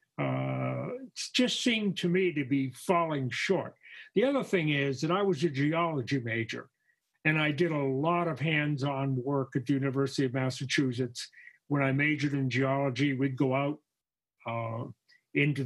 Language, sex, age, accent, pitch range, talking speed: English, male, 50-69, American, 135-180 Hz, 175 wpm